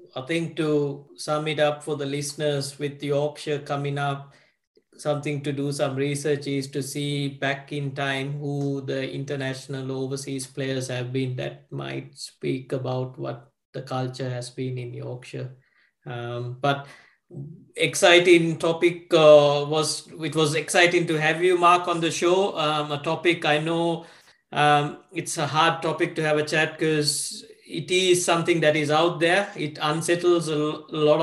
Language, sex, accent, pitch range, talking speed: English, male, Indian, 140-170 Hz, 160 wpm